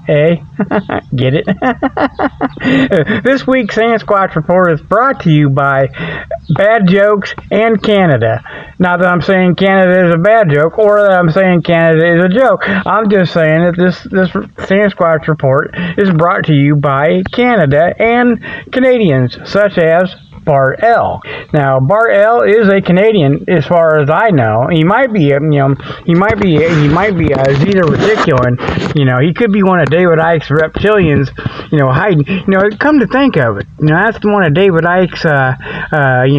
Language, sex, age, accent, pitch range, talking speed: English, male, 50-69, American, 145-195 Hz, 180 wpm